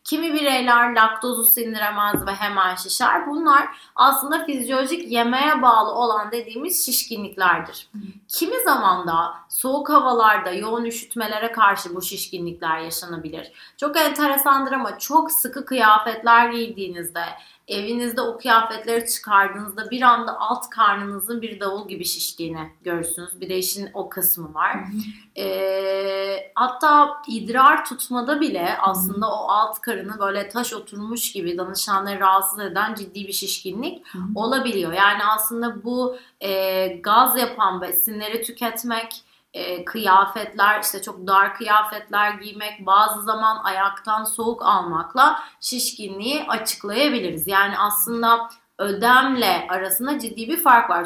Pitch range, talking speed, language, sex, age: 195-245 Hz, 120 wpm, Turkish, female, 30-49